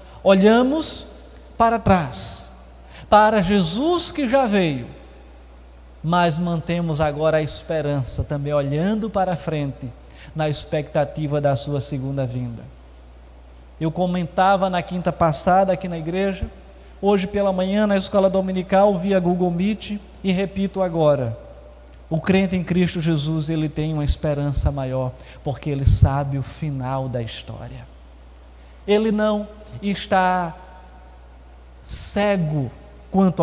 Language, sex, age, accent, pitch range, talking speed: Portuguese, male, 20-39, Brazilian, 125-190 Hz, 120 wpm